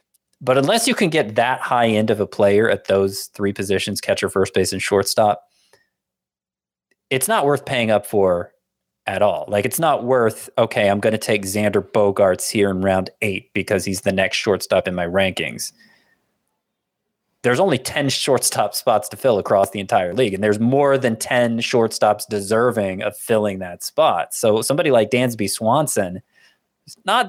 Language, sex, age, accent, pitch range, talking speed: English, male, 20-39, American, 100-135 Hz, 175 wpm